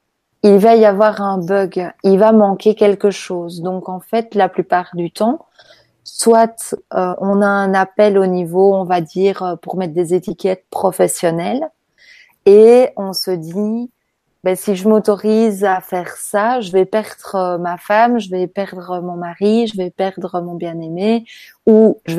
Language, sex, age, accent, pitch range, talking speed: French, female, 20-39, French, 185-215 Hz, 170 wpm